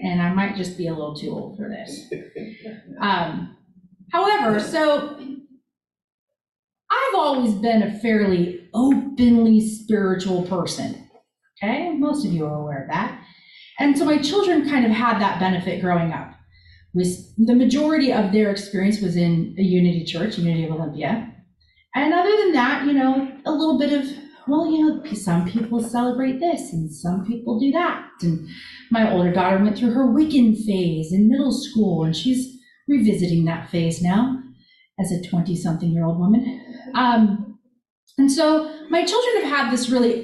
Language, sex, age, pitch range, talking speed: English, female, 30-49, 185-275 Hz, 165 wpm